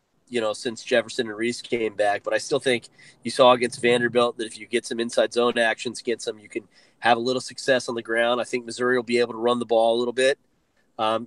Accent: American